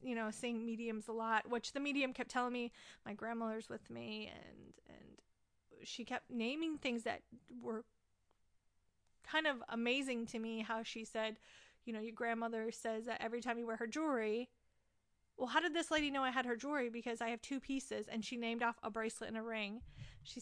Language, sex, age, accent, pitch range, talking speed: English, female, 30-49, American, 220-250 Hz, 205 wpm